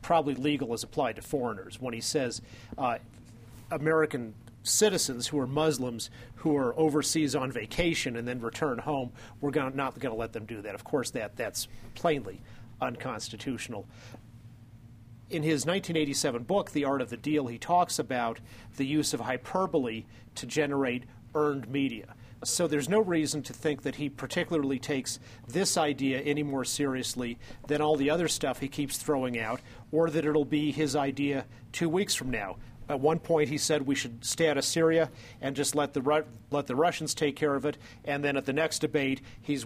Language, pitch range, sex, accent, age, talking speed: English, 120-155 Hz, male, American, 40-59, 185 wpm